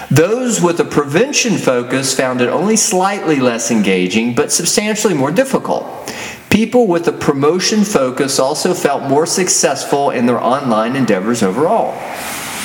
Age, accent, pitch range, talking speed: 40-59, American, 140-215 Hz, 140 wpm